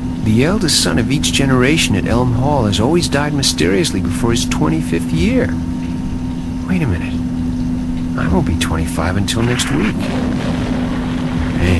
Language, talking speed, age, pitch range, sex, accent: English, 140 wpm, 50-69, 85-115 Hz, male, American